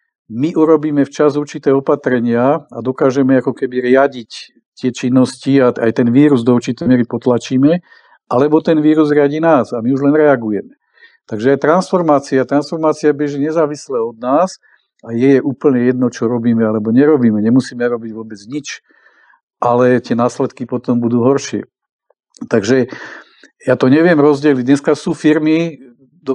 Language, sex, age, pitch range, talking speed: Czech, male, 50-69, 120-145 Hz, 145 wpm